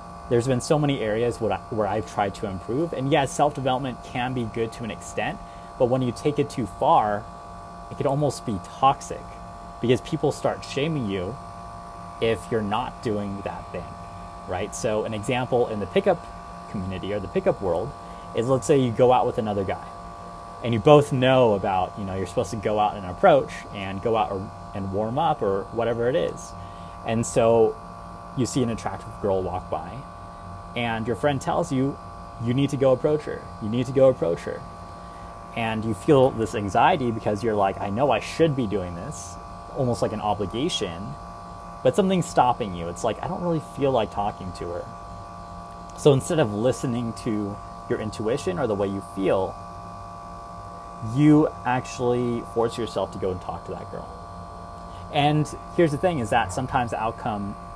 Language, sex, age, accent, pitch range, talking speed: English, male, 30-49, American, 90-125 Hz, 185 wpm